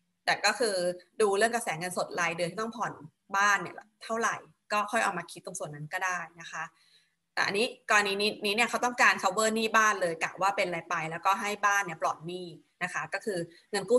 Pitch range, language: 170-215 Hz, Thai